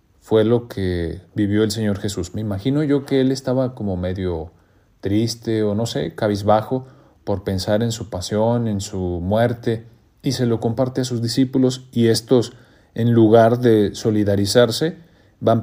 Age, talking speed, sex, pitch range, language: 40-59, 160 wpm, male, 100-120 Hz, Spanish